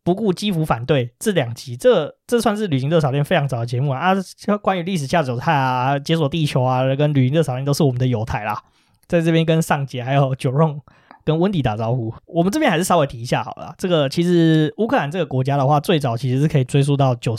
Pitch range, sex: 130-165 Hz, male